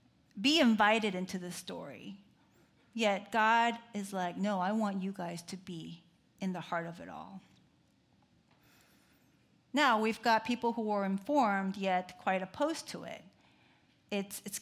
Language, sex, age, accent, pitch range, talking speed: English, female, 40-59, American, 185-235 Hz, 150 wpm